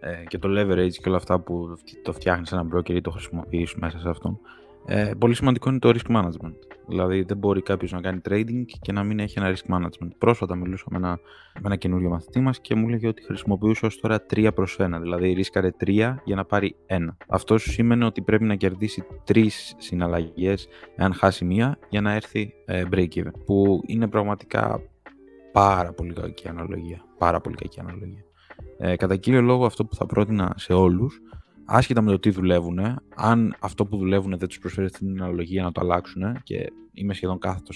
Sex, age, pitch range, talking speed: male, 20-39, 90-110 Hz, 190 wpm